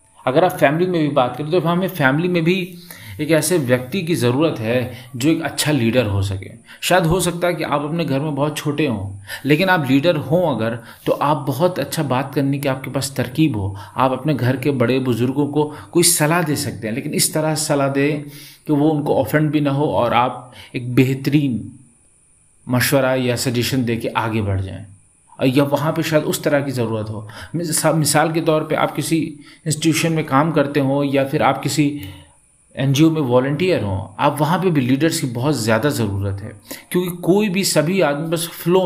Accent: native